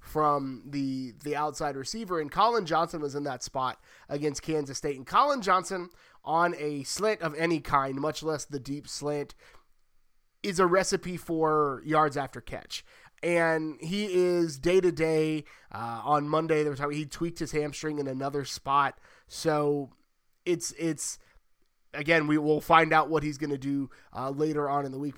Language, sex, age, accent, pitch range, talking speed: English, male, 20-39, American, 145-175 Hz, 175 wpm